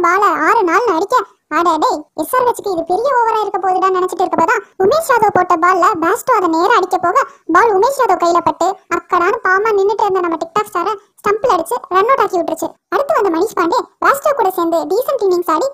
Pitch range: 345-445 Hz